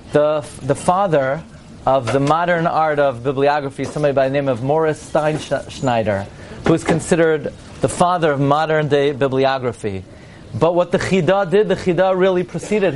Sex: male